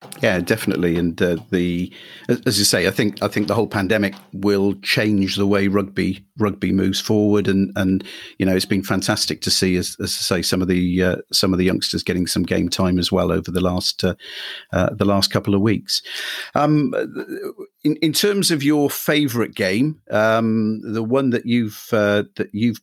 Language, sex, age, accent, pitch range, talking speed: English, male, 50-69, British, 95-110 Hz, 200 wpm